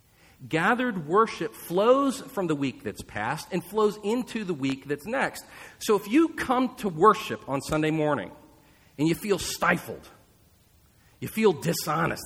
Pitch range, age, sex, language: 120-170 Hz, 40-59, male, English